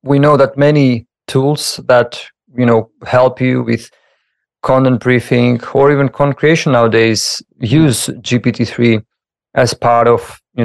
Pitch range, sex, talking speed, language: 115-135 Hz, male, 135 wpm, English